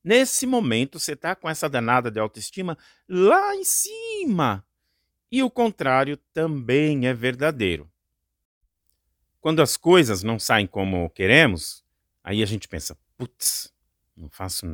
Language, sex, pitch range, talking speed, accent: Portuguese, male, 95-155 Hz, 130 wpm, Brazilian